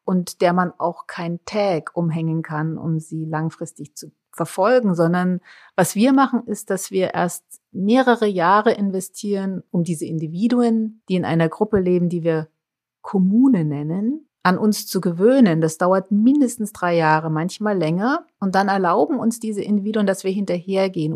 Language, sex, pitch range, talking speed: German, female, 160-200 Hz, 160 wpm